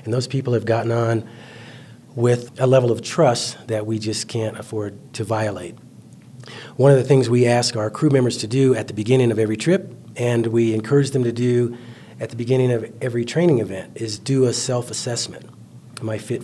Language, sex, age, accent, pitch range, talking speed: English, male, 40-59, American, 115-130 Hz, 200 wpm